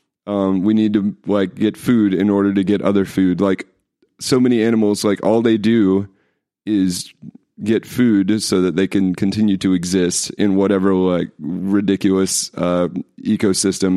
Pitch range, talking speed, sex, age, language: 95-110 Hz, 160 wpm, male, 30-49, English